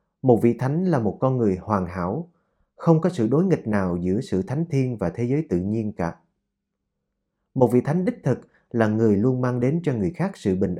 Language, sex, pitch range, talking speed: Vietnamese, male, 100-155 Hz, 220 wpm